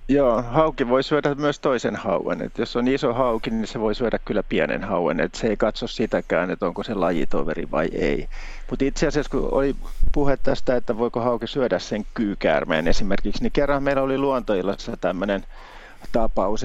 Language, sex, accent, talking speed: Finnish, male, native, 185 wpm